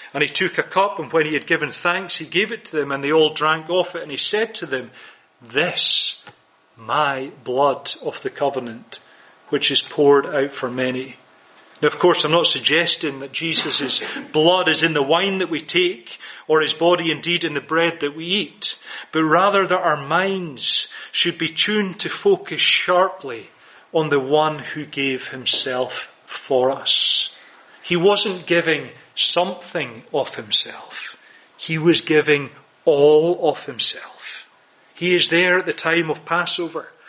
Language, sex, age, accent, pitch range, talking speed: English, male, 40-59, British, 150-185 Hz, 170 wpm